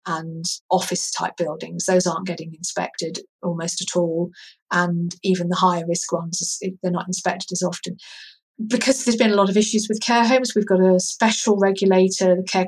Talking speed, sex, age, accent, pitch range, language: 185 wpm, female, 40-59, British, 180-205 Hz, English